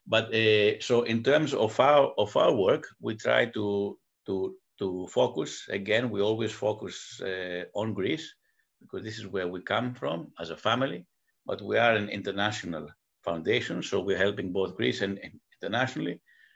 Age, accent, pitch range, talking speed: 60-79, Spanish, 95-130 Hz, 165 wpm